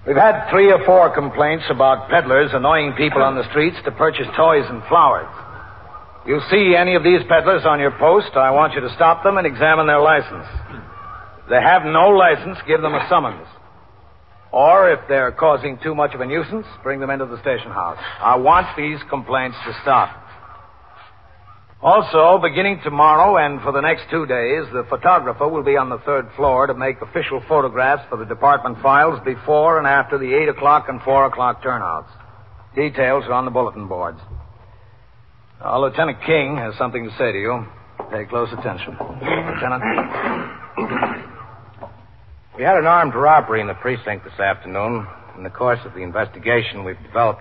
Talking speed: 175 wpm